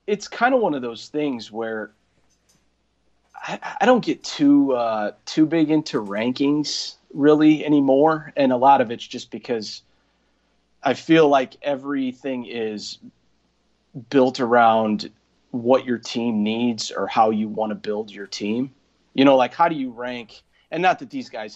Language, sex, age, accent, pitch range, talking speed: English, male, 30-49, American, 110-140 Hz, 160 wpm